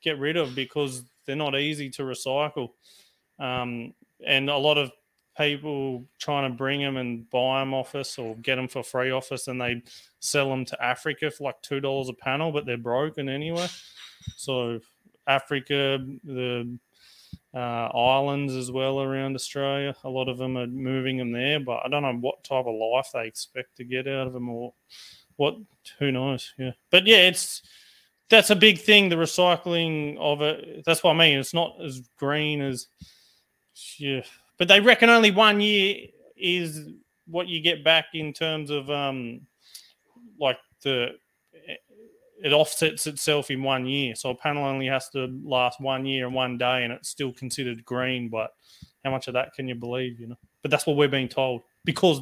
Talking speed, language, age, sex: 185 wpm, English, 20-39, male